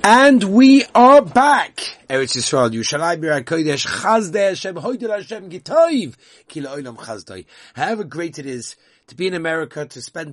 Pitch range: 130-175 Hz